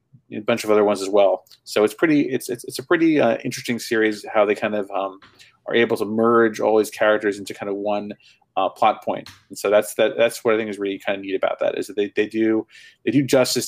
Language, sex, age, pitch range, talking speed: English, male, 30-49, 105-125 Hz, 265 wpm